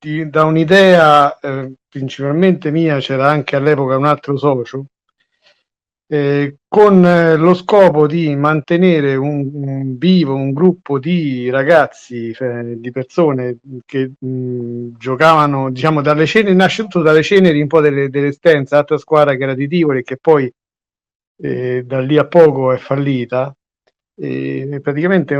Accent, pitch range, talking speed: native, 135-160 Hz, 140 wpm